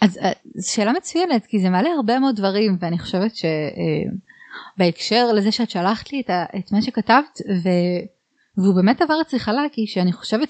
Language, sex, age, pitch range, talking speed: Hebrew, female, 20-39, 180-235 Hz, 170 wpm